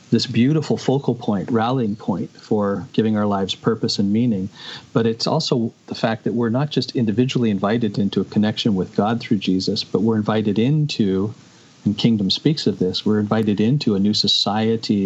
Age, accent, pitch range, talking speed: 40-59, American, 100-120 Hz, 185 wpm